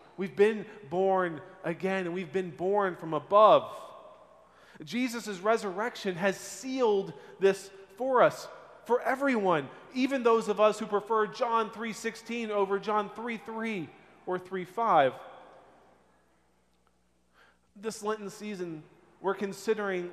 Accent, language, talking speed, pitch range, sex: American, English, 110 wpm, 170-200 Hz, male